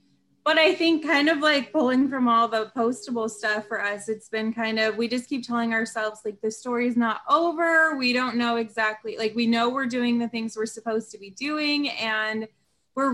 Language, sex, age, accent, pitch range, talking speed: English, female, 20-39, American, 210-250 Hz, 215 wpm